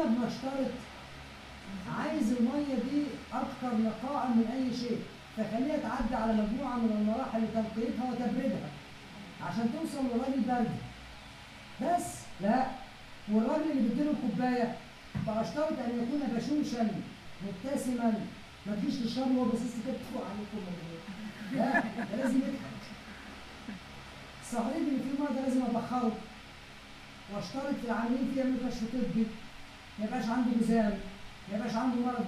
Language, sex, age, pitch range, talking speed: Arabic, female, 50-69, 220-255 Hz, 115 wpm